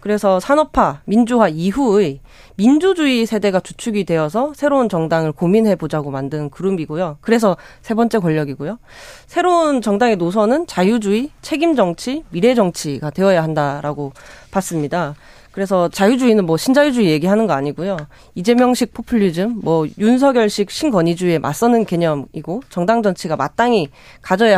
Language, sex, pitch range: Korean, female, 165-235 Hz